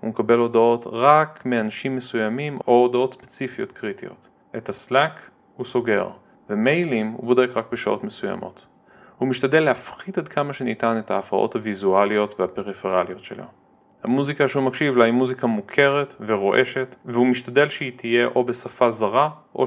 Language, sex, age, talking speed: Hebrew, male, 30-49, 145 wpm